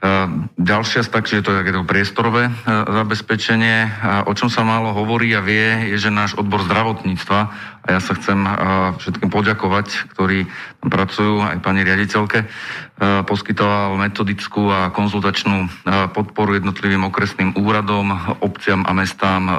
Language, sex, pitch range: Slovak, male, 90-100 Hz